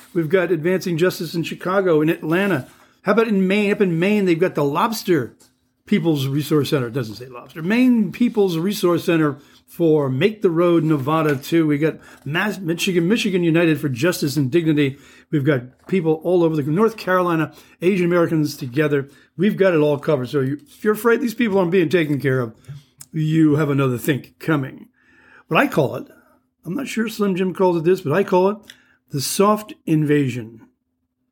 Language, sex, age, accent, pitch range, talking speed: English, male, 60-79, American, 140-190 Hz, 185 wpm